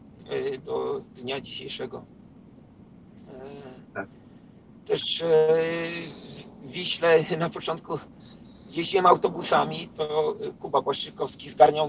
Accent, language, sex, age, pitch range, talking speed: native, Polish, male, 40-59, 155-215 Hz, 70 wpm